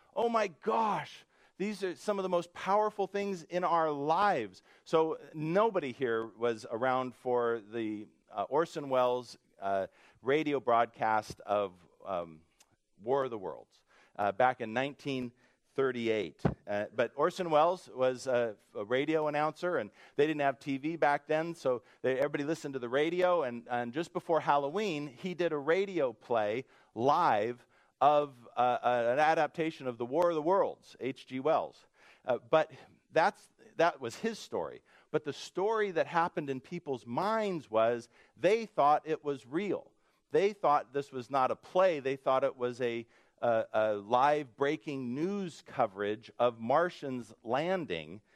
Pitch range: 125-170 Hz